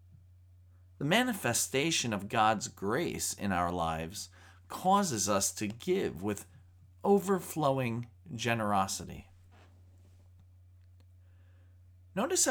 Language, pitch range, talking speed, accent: English, 90-140 Hz, 75 wpm, American